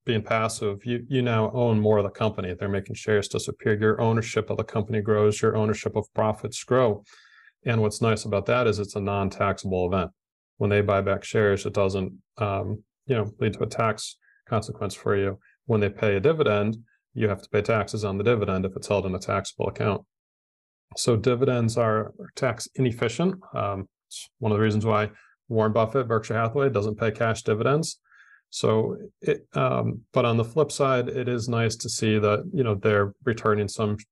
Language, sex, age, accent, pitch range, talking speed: English, male, 30-49, American, 105-115 Hz, 195 wpm